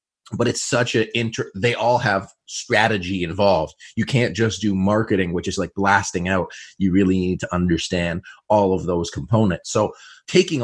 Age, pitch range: 30-49, 95-120 Hz